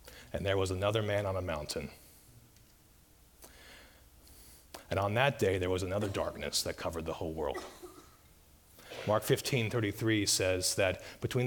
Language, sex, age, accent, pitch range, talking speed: English, male, 40-59, American, 90-125 Hz, 140 wpm